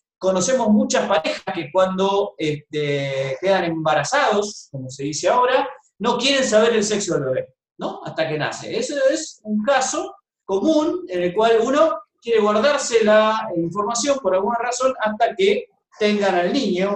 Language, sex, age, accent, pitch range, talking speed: Spanish, male, 30-49, Argentinian, 170-250 Hz, 155 wpm